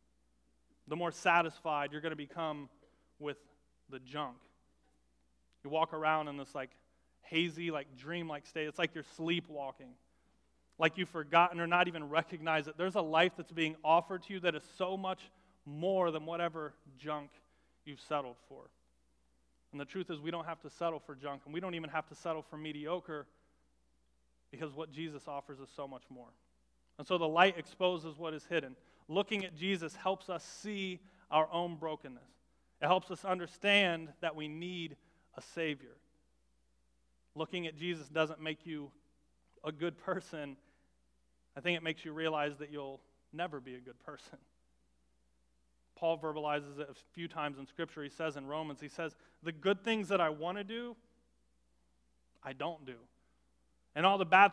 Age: 30-49